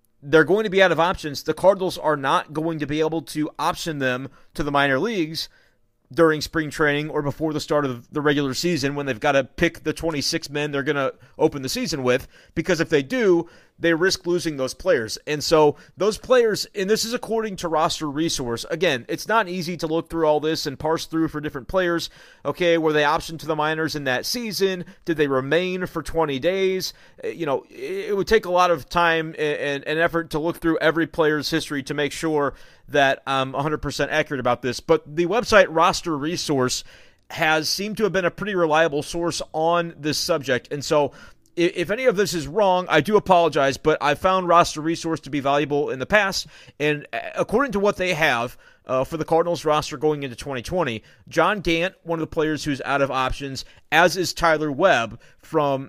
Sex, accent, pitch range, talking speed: male, American, 145-175 Hz, 210 wpm